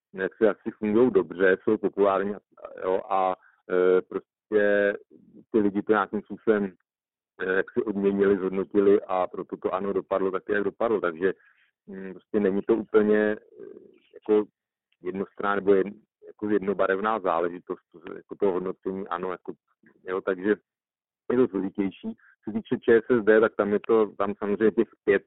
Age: 50-69